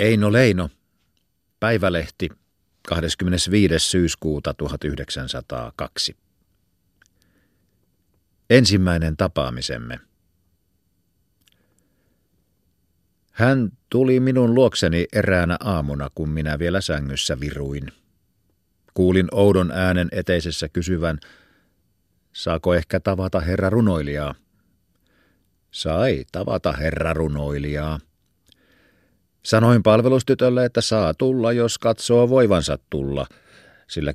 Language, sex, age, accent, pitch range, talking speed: Finnish, male, 50-69, native, 75-100 Hz, 75 wpm